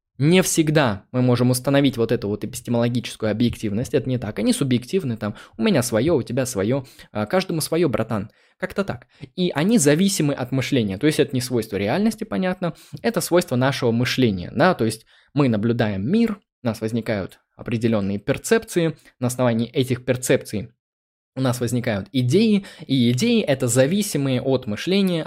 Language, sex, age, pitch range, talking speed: Russian, male, 20-39, 115-175 Hz, 160 wpm